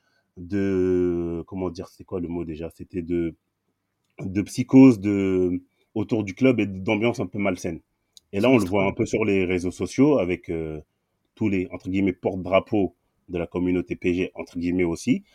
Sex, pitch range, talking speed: male, 95-125 Hz, 180 wpm